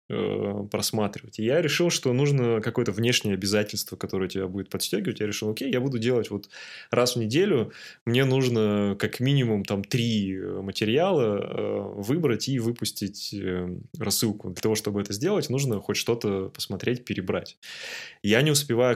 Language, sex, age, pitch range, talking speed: Russian, male, 20-39, 100-120 Hz, 150 wpm